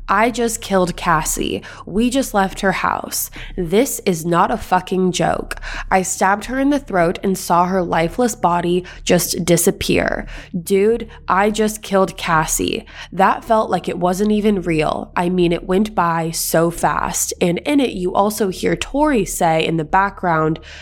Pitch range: 180-215 Hz